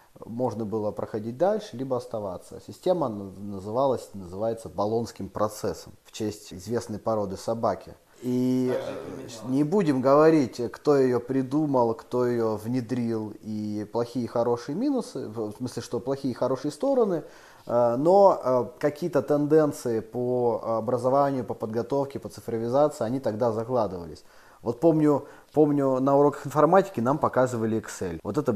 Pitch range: 105-135 Hz